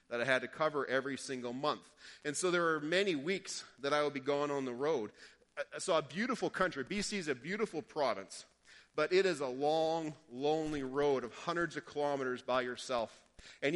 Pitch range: 140-180 Hz